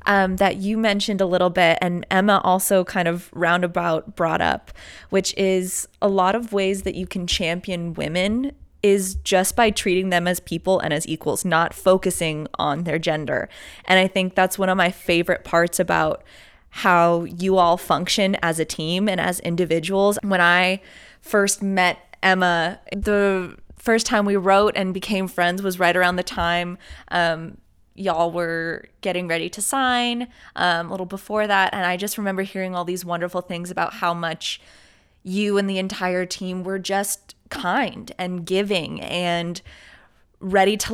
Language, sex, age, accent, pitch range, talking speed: English, female, 20-39, American, 175-195 Hz, 170 wpm